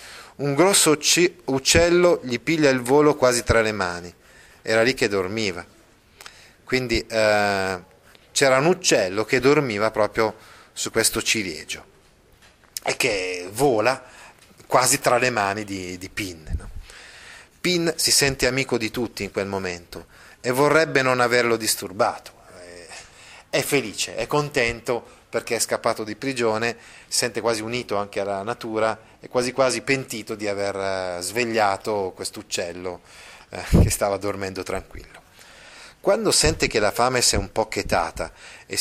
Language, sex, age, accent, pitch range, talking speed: Italian, male, 30-49, native, 105-130 Hz, 140 wpm